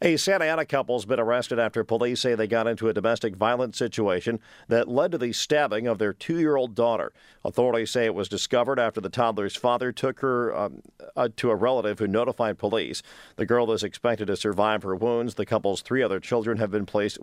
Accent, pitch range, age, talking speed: American, 110-135 Hz, 50-69, 210 wpm